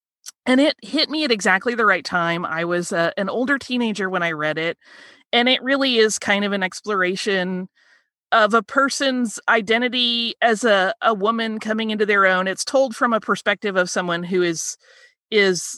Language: English